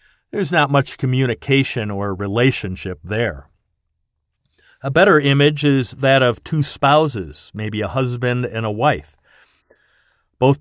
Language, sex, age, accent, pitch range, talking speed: English, male, 50-69, American, 100-130 Hz, 125 wpm